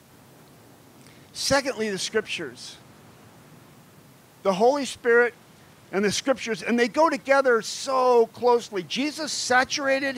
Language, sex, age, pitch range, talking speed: English, male, 50-69, 205-270 Hz, 100 wpm